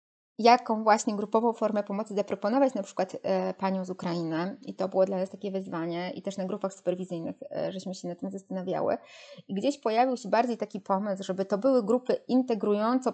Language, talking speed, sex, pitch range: Polish, 190 wpm, female, 195-230 Hz